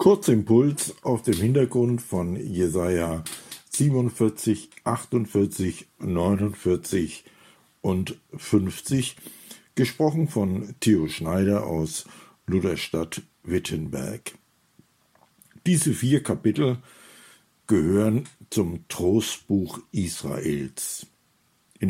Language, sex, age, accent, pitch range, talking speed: German, male, 60-79, German, 90-115 Hz, 75 wpm